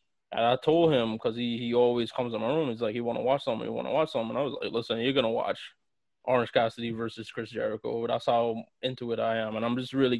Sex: male